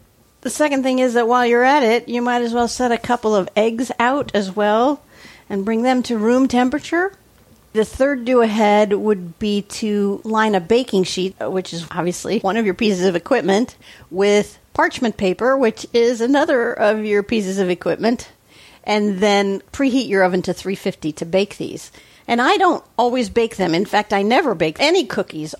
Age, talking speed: 50-69, 190 wpm